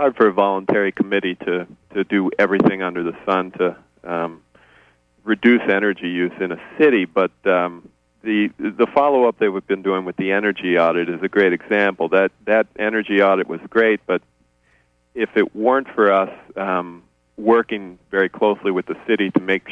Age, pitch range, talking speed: 40-59, 85-100 Hz, 180 wpm